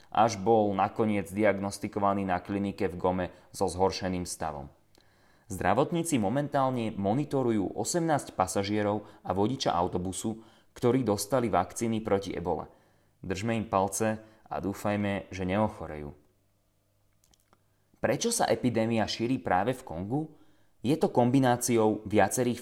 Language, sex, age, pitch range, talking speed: Slovak, male, 20-39, 100-115 Hz, 110 wpm